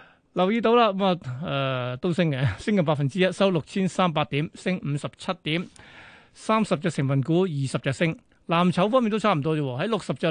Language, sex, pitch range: Chinese, male, 145-190 Hz